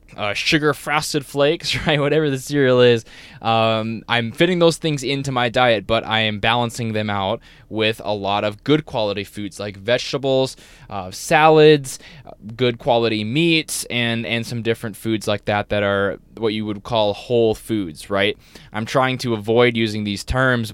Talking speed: 175 wpm